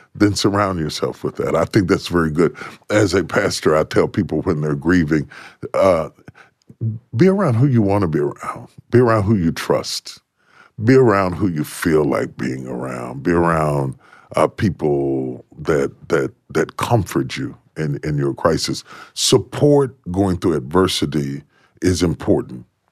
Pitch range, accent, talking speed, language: 75-110 Hz, American, 155 wpm, English